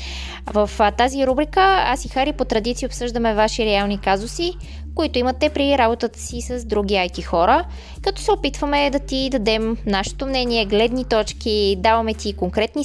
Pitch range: 200-270 Hz